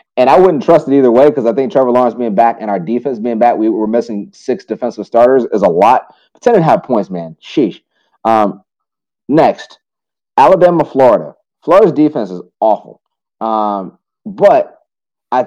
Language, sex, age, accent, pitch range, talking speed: English, male, 30-49, American, 100-135 Hz, 180 wpm